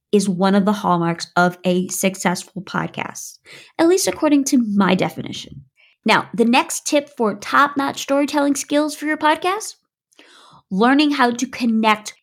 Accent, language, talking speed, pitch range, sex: American, English, 145 wpm, 205-280 Hz, female